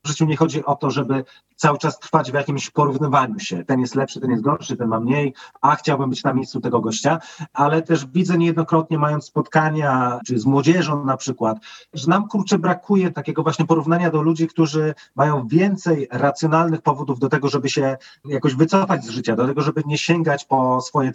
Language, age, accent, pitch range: Polish, 40-59, native, 130-160 Hz